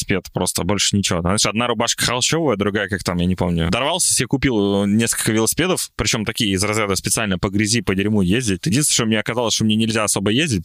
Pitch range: 95-130 Hz